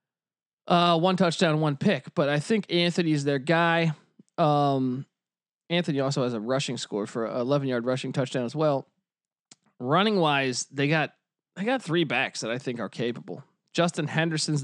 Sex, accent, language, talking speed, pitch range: male, American, English, 170 wpm, 140-175 Hz